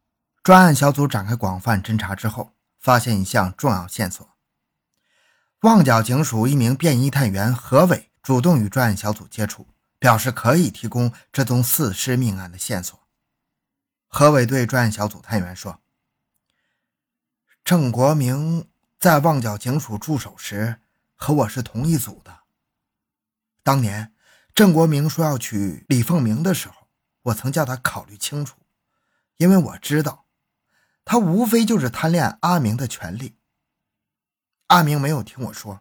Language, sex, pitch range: Chinese, male, 110-155 Hz